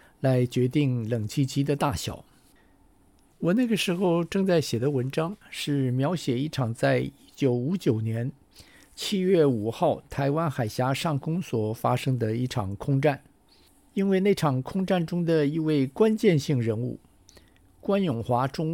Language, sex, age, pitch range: Chinese, male, 50-69, 125-160 Hz